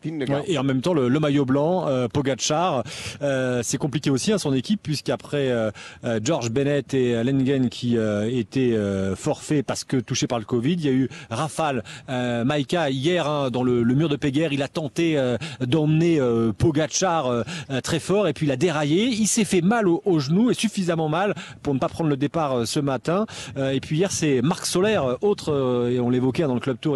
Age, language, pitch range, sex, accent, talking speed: 40-59, French, 130-180 Hz, male, French, 225 wpm